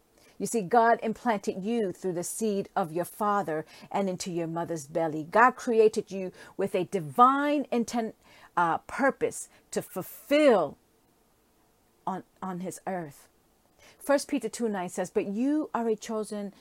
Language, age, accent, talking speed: English, 50-69, American, 150 wpm